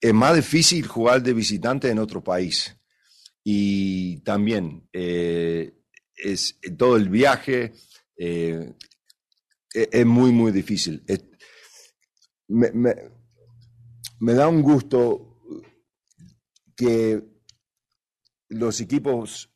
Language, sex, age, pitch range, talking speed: English, male, 50-69, 105-125 Hz, 85 wpm